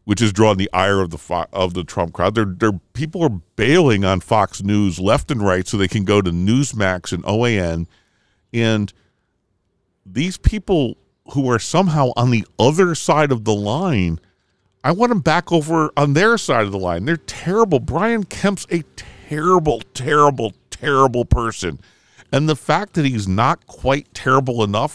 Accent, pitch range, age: American, 90-125 Hz, 50-69